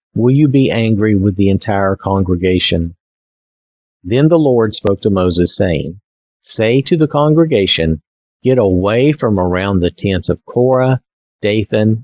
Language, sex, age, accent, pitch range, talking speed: English, male, 50-69, American, 95-135 Hz, 140 wpm